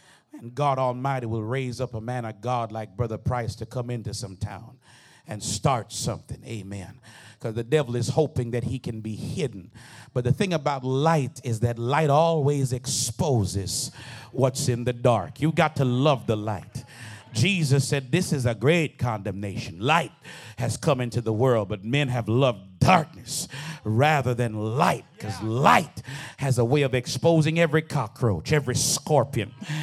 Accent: American